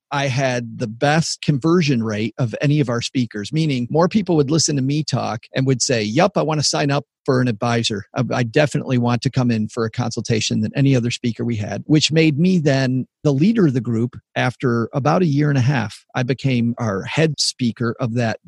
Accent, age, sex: American, 40-59, male